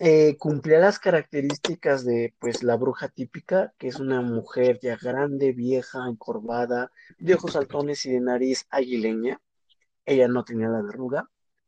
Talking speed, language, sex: 150 wpm, Spanish, male